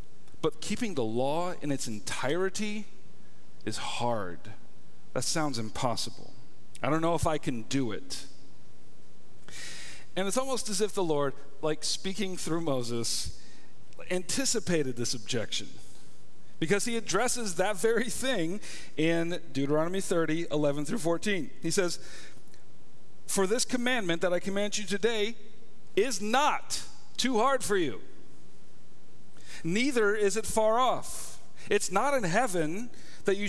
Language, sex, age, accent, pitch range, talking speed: English, male, 40-59, American, 140-205 Hz, 130 wpm